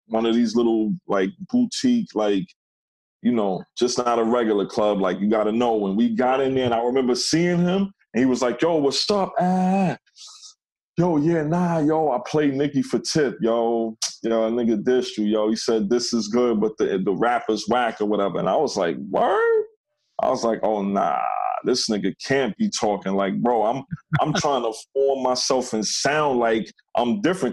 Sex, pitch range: male, 120-170 Hz